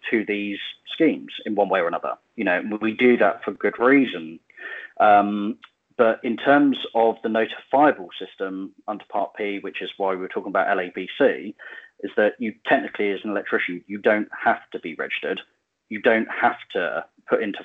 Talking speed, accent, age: 180 wpm, British, 30-49